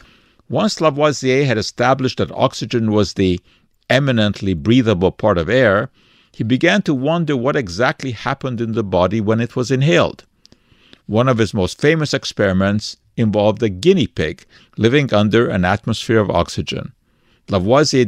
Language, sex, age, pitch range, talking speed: English, male, 50-69, 105-145 Hz, 145 wpm